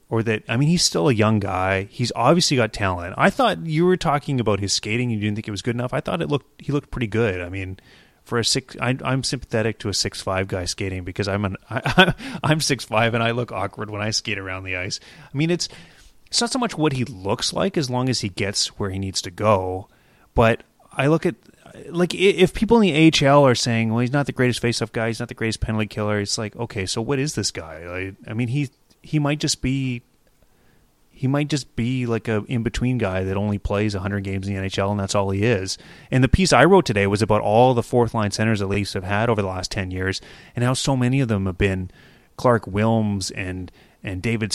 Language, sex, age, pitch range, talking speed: English, male, 30-49, 100-130 Hz, 250 wpm